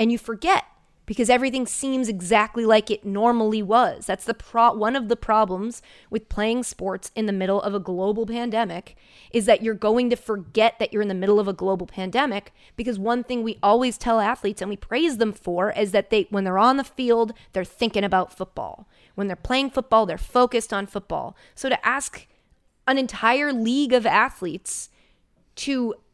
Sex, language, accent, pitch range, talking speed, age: female, English, American, 205-255 Hz, 195 wpm, 20-39